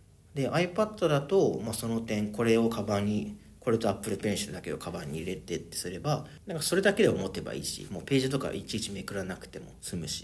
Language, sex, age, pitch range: Japanese, male, 40-59, 100-140 Hz